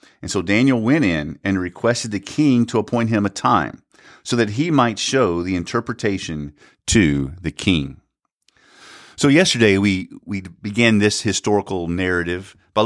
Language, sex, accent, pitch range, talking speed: English, male, American, 90-115 Hz, 155 wpm